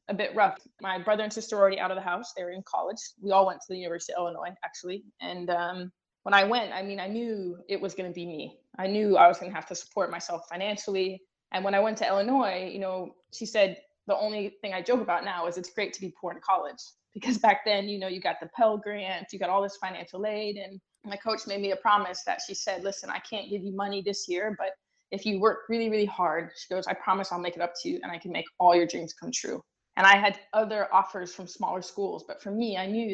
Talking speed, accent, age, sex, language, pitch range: 270 wpm, American, 20-39, female, English, 180-205 Hz